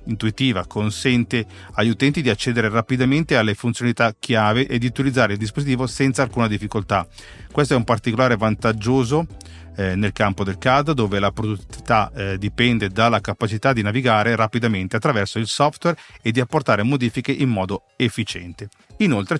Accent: native